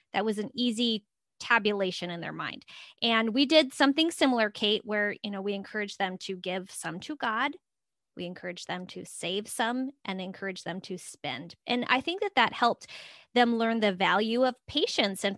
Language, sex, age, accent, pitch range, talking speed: English, female, 20-39, American, 200-255 Hz, 190 wpm